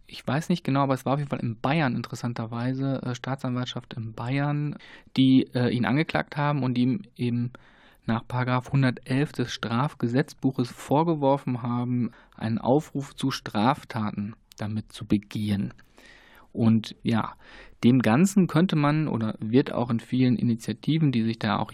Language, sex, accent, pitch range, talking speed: German, male, German, 110-130 Hz, 145 wpm